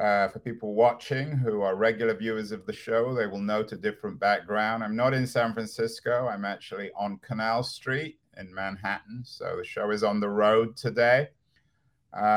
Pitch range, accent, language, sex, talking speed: 90-120 Hz, British, English, male, 185 wpm